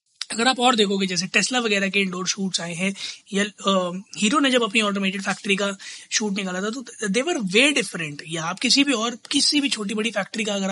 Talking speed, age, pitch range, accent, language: 235 wpm, 20-39, 195-235 Hz, native, Hindi